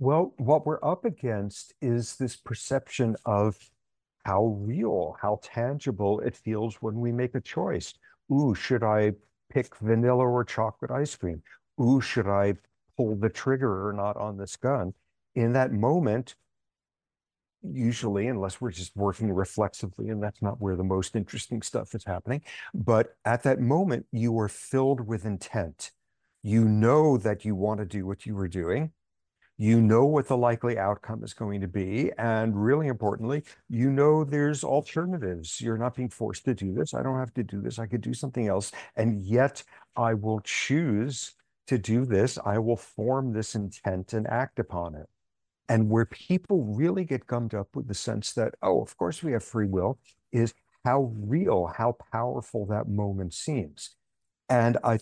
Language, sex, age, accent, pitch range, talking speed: English, male, 50-69, American, 105-130 Hz, 175 wpm